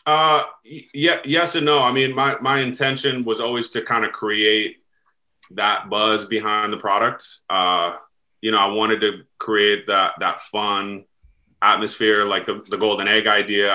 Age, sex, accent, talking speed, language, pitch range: 30-49, male, American, 165 wpm, English, 100-120 Hz